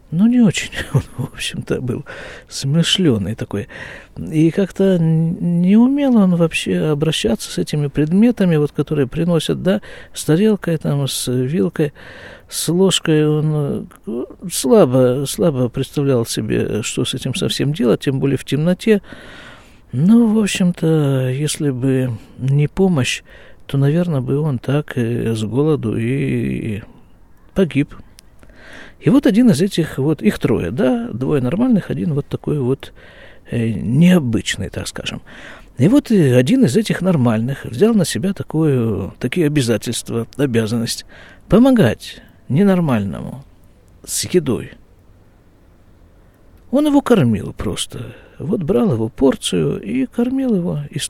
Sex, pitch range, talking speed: male, 120-180 Hz, 125 wpm